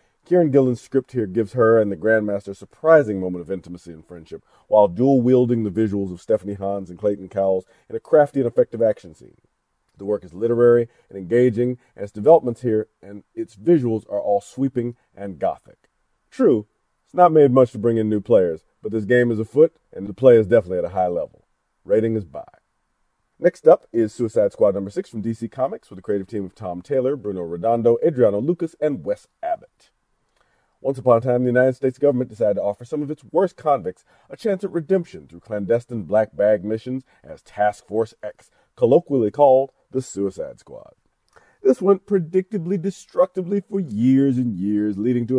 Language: English